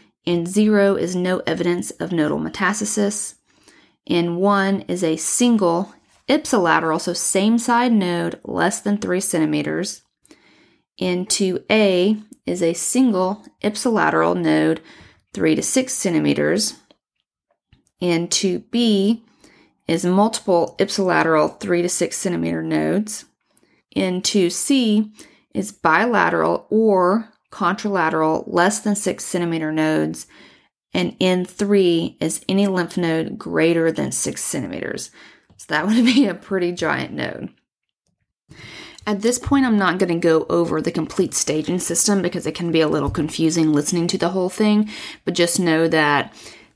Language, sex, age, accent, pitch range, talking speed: English, female, 40-59, American, 165-210 Hz, 125 wpm